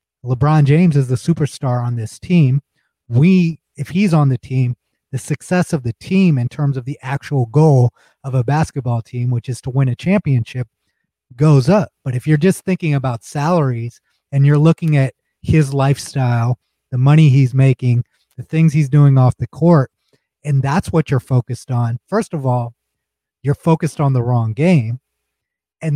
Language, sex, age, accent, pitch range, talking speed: English, male, 30-49, American, 125-155 Hz, 180 wpm